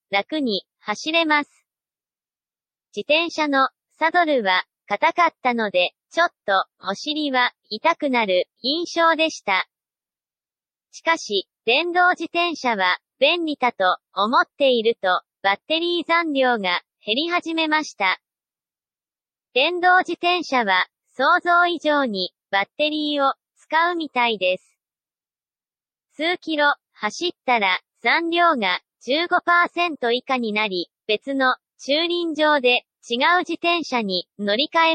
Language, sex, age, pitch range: Japanese, male, 40-59, 225-330 Hz